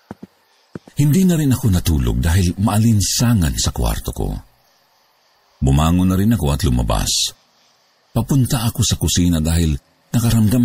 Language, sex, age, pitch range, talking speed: Filipino, male, 50-69, 85-120 Hz, 125 wpm